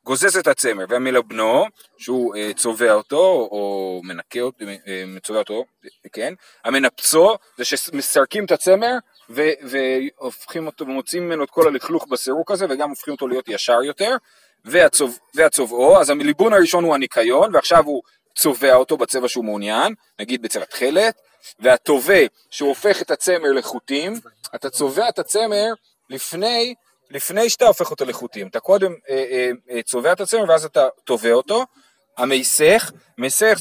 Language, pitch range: Hebrew, 125-200 Hz